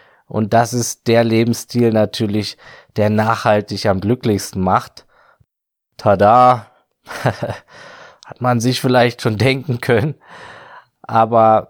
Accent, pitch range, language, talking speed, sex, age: German, 105-125 Hz, German, 105 wpm, male, 20-39